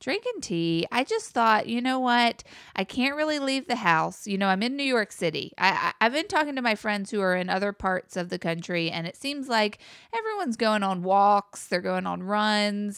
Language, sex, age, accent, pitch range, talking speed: English, female, 20-39, American, 180-240 Hz, 230 wpm